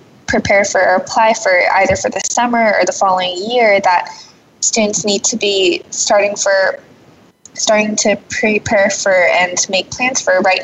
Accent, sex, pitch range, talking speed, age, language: American, female, 185-225 Hz, 165 wpm, 10-29, English